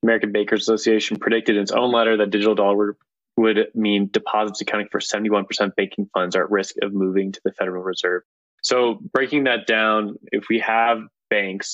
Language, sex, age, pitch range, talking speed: English, male, 20-39, 95-110 Hz, 185 wpm